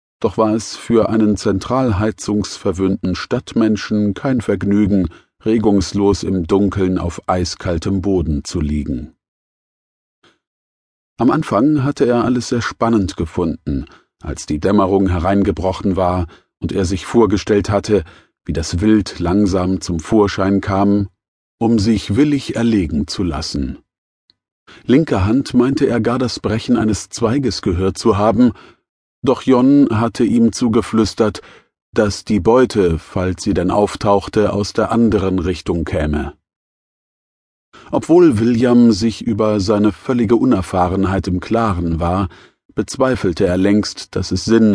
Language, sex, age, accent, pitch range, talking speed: German, male, 40-59, German, 95-115 Hz, 125 wpm